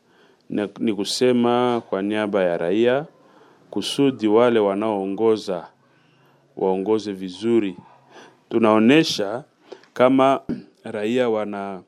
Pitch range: 105-140 Hz